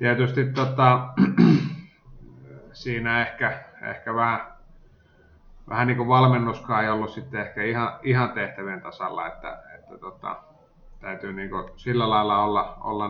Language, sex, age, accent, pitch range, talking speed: Finnish, male, 30-49, native, 100-120 Hz, 130 wpm